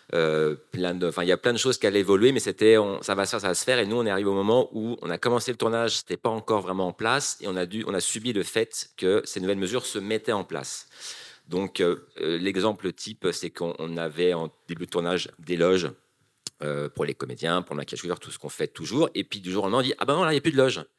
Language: French